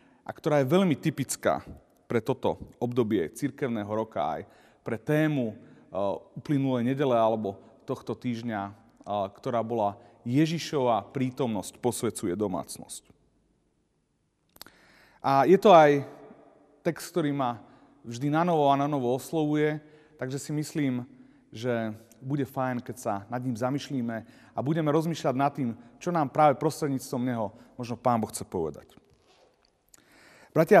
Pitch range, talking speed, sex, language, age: 125-165 Hz, 130 wpm, male, Slovak, 30-49